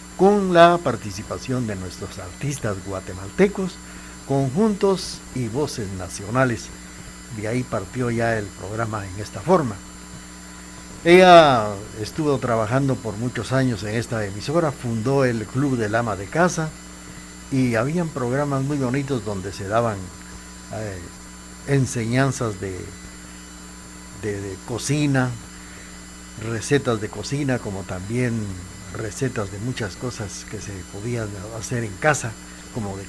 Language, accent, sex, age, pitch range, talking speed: Spanish, Mexican, male, 60-79, 95-130 Hz, 120 wpm